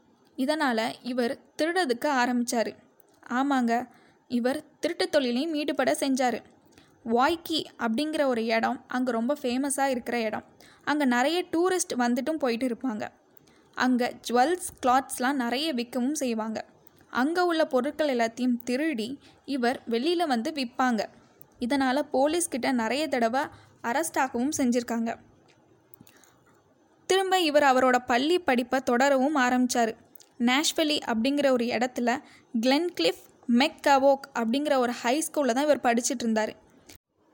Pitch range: 240-295 Hz